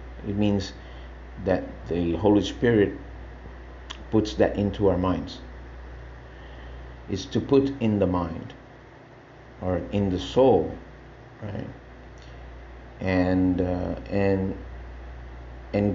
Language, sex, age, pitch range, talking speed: English, male, 50-69, 65-105 Hz, 100 wpm